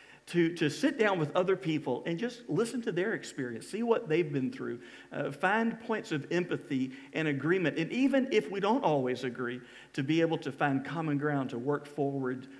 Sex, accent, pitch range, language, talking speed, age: male, American, 140-170 Hz, English, 200 wpm, 50-69